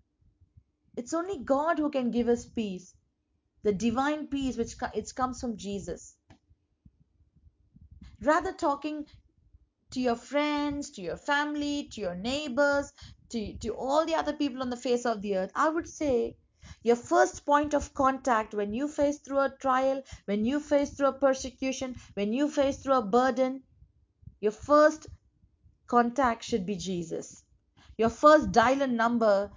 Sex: female